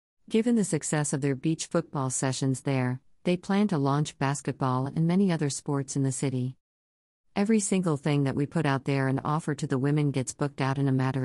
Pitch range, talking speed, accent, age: 130-160 Hz, 215 wpm, American, 40-59